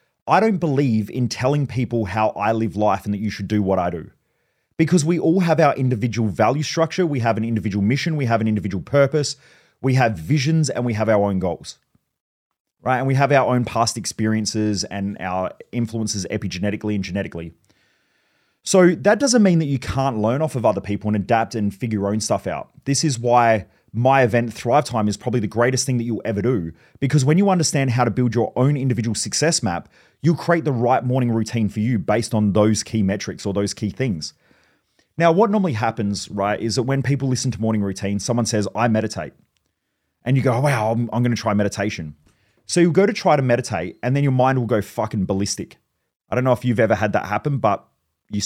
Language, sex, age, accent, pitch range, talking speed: English, male, 30-49, Australian, 105-135 Hz, 220 wpm